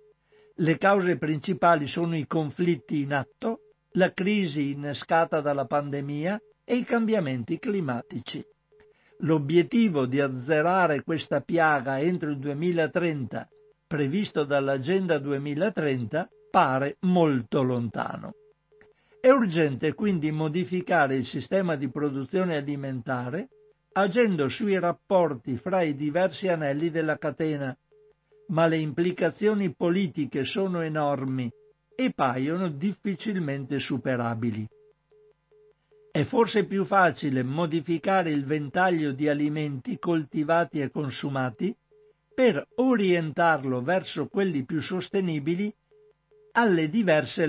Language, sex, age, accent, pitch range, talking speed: Italian, male, 60-79, native, 145-200 Hz, 100 wpm